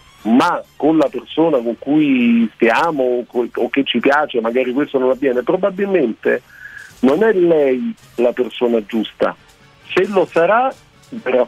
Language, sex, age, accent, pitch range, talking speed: Italian, male, 50-69, native, 130-175 Hz, 135 wpm